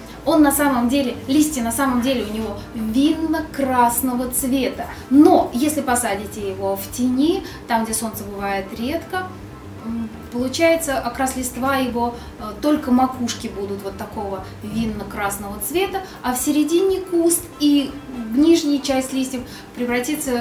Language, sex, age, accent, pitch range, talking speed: Russian, female, 20-39, native, 235-300 Hz, 125 wpm